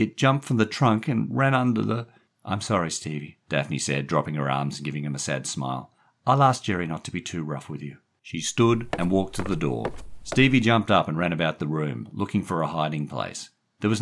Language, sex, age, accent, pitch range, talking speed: English, male, 50-69, Australian, 75-115 Hz, 235 wpm